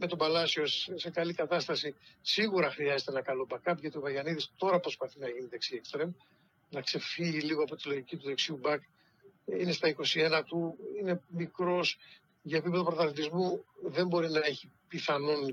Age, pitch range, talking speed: 60-79, 140-180 Hz, 165 wpm